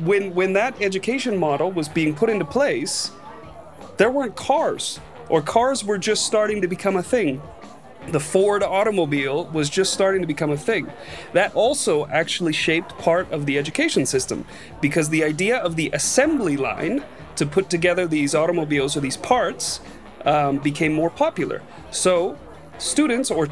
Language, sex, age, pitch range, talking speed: Spanish, male, 30-49, 160-210 Hz, 160 wpm